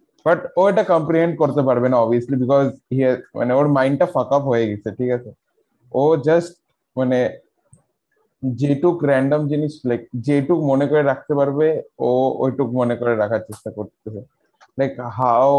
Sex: male